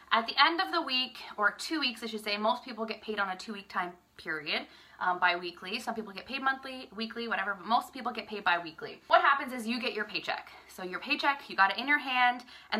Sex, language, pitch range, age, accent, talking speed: female, English, 195-270 Hz, 20-39, American, 255 wpm